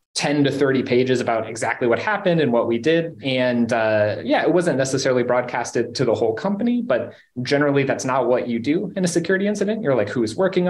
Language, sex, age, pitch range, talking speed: English, male, 30-49, 120-165 Hz, 220 wpm